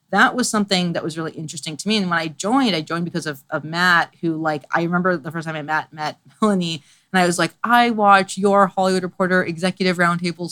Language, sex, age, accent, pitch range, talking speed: English, female, 30-49, American, 160-190 Hz, 235 wpm